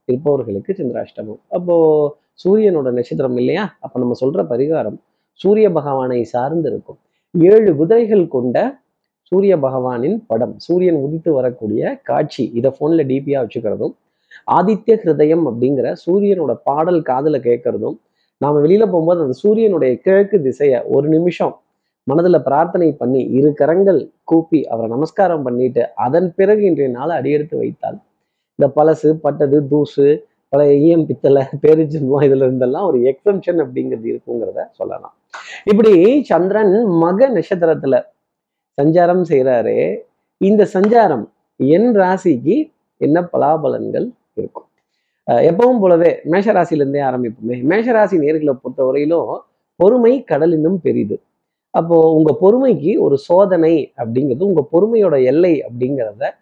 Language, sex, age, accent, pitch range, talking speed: Tamil, male, 30-49, native, 135-190 Hz, 100 wpm